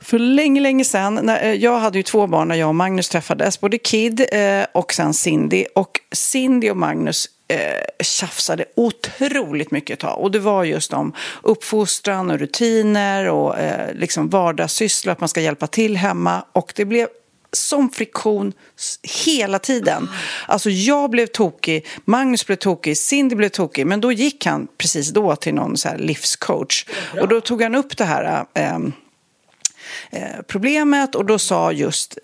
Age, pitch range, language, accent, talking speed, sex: 40-59, 170-240 Hz, Swedish, native, 165 wpm, female